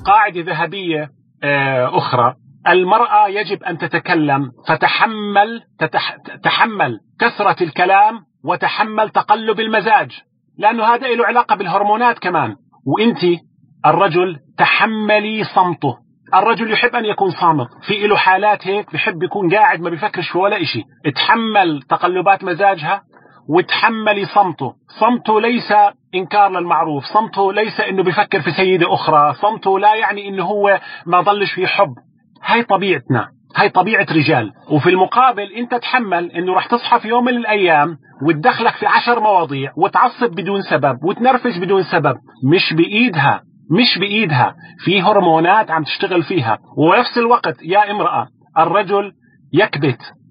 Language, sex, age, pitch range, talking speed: Arabic, male, 40-59, 170-215 Hz, 130 wpm